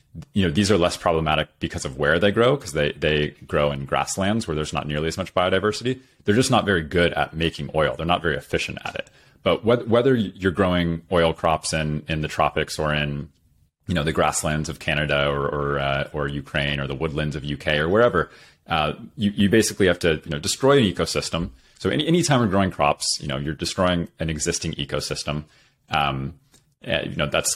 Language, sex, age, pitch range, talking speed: English, male, 30-49, 75-90 Hz, 215 wpm